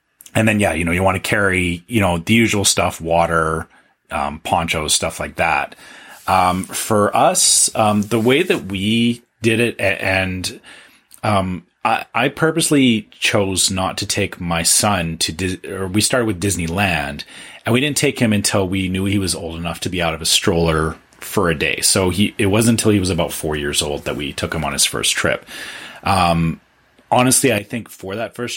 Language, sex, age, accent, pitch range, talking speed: English, male, 30-49, American, 85-110 Hz, 200 wpm